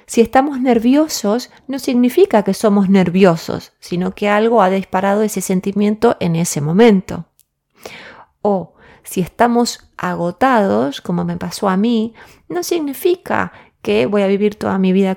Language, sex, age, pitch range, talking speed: Spanish, female, 30-49, 180-225 Hz, 140 wpm